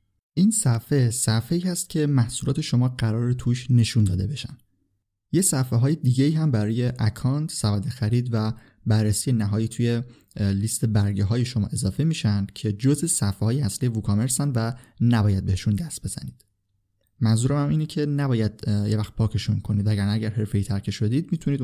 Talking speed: 155 wpm